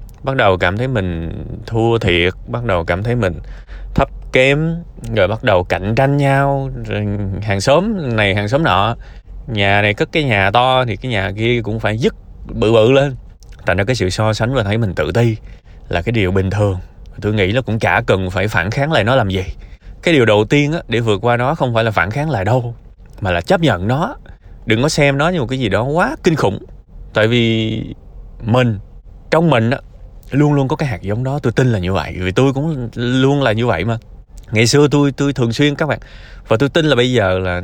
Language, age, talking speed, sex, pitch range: Vietnamese, 20-39, 235 wpm, male, 100-130 Hz